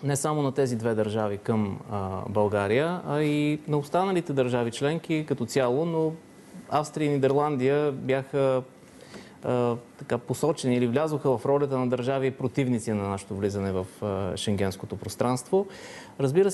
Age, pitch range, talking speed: 30-49, 110-145 Hz, 130 wpm